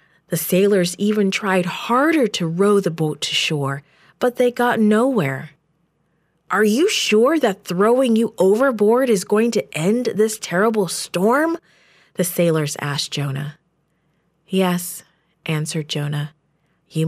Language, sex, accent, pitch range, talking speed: English, female, American, 160-210 Hz, 130 wpm